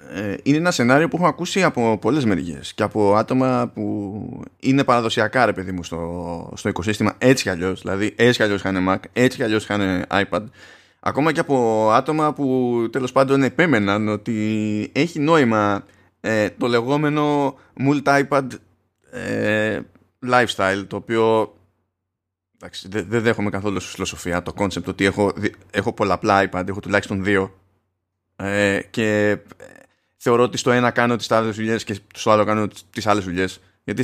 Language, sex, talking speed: Greek, male, 145 wpm